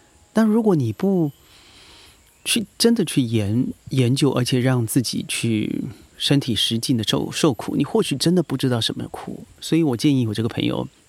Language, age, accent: Chinese, 30-49, native